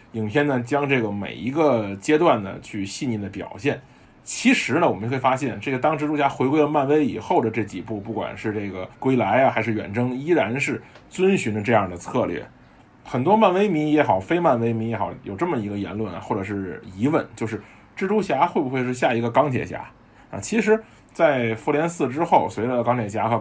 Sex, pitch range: male, 110-140 Hz